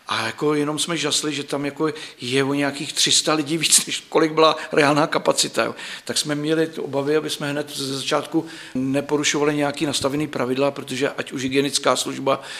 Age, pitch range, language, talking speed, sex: 50-69, 135-150 Hz, Czech, 180 wpm, male